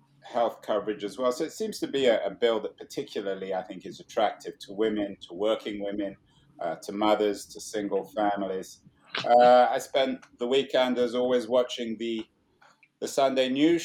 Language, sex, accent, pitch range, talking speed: English, male, British, 105-130 Hz, 180 wpm